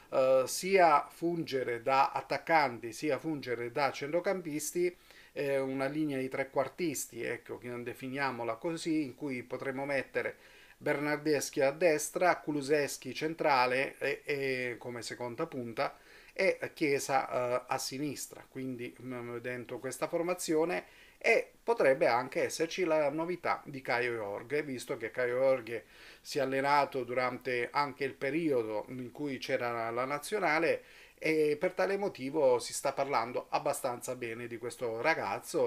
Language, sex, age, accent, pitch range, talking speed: Italian, male, 40-59, native, 125-155 Hz, 135 wpm